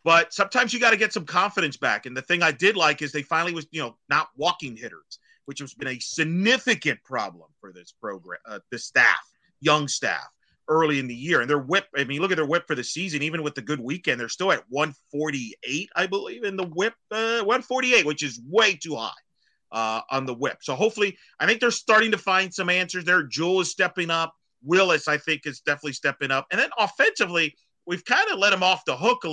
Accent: American